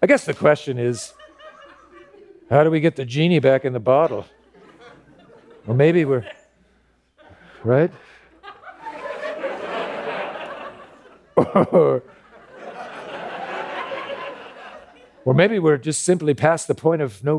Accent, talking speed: American, 105 wpm